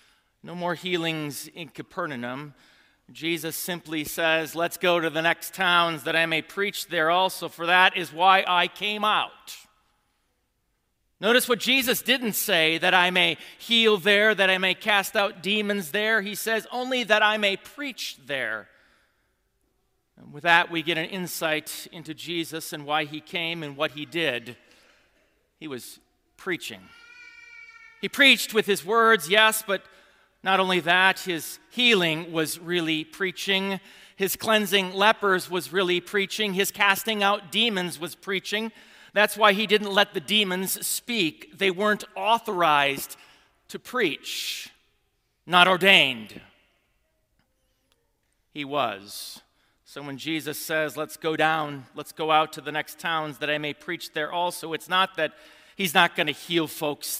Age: 40-59